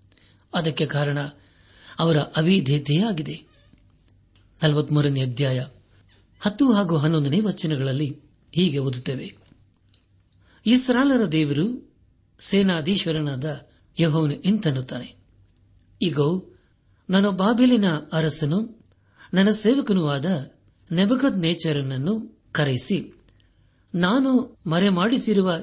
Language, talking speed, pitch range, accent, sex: Kannada, 65 wpm, 130-175 Hz, native, male